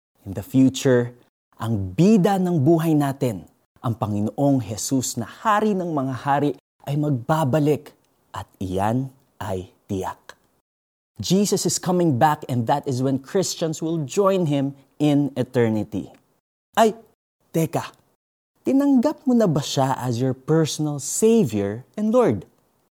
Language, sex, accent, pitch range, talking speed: Filipino, male, native, 115-155 Hz, 130 wpm